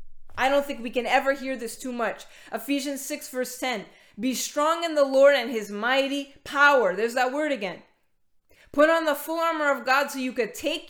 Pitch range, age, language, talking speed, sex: 245-290 Hz, 20-39, English, 210 wpm, female